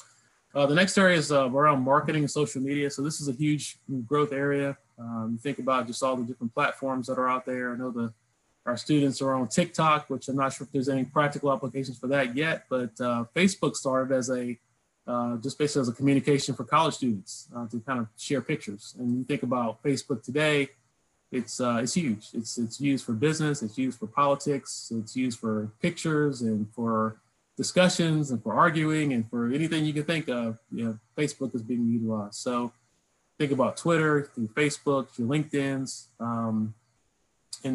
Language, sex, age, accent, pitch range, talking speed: English, male, 20-39, American, 115-145 Hz, 195 wpm